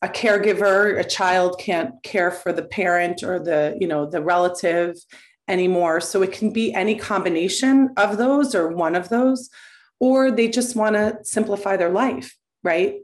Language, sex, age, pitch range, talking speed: English, female, 30-49, 175-215 Hz, 165 wpm